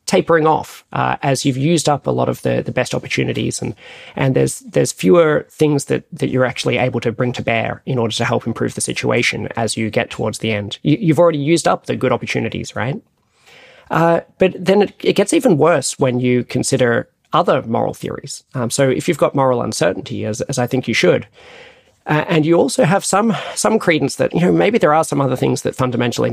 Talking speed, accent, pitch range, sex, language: 220 wpm, Australian, 120-170 Hz, male, English